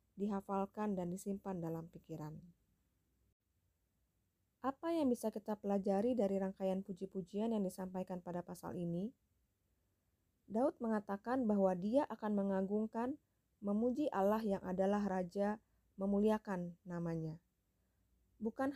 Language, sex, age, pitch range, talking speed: Indonesian, female, 20-39, 170-215 Hz, 100 wpm